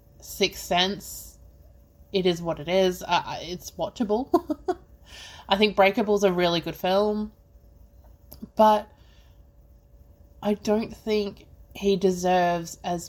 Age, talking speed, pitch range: 20-39, 110 wpm, 165-220 Hz